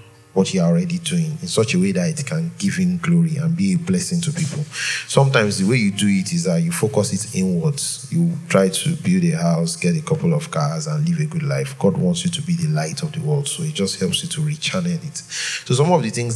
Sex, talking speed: male, 260 wpm